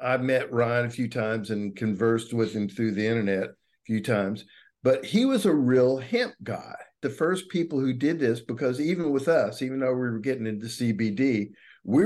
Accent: American